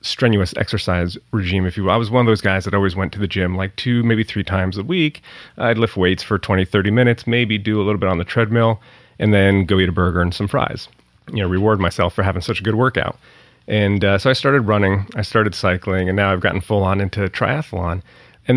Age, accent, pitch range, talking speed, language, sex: 30-49, American, 95-115 Hz, 250 wpm, English, male